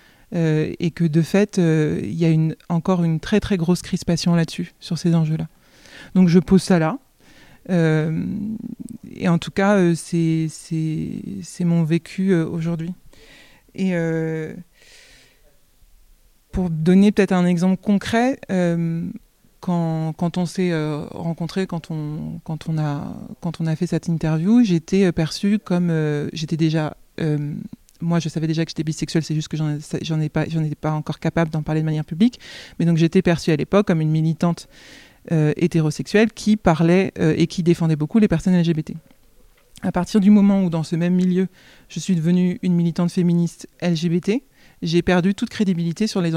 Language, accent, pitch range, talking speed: French, French, 160-190 Hz, 175 wpm